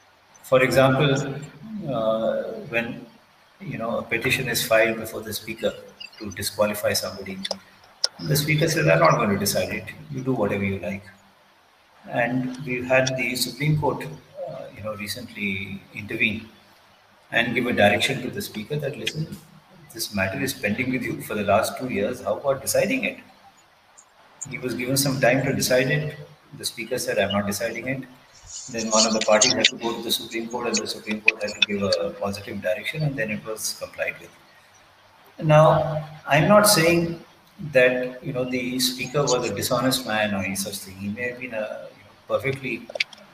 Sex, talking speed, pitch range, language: male, 175 wpm, 110-145 Hz, English